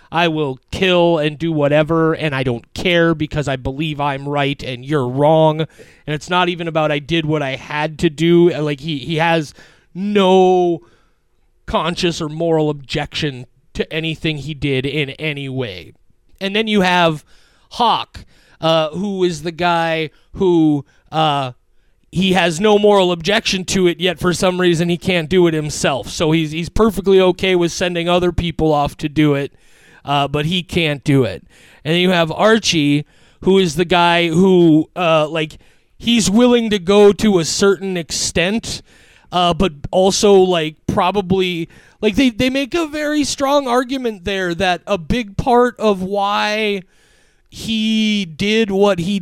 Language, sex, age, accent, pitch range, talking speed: English, male, 30-49, American, 155-200 Hz, 165 wpm